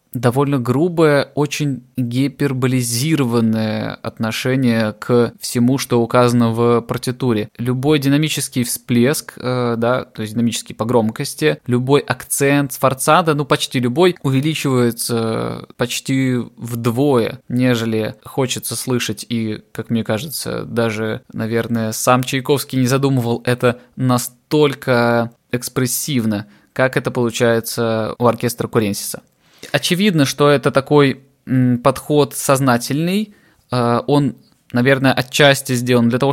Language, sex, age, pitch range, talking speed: Russian, male, 20-39, 115-140 Hz, 105 wpm